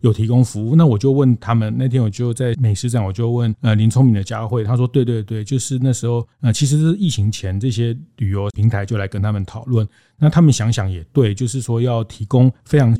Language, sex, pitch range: Chinese, male, 105-130 Hz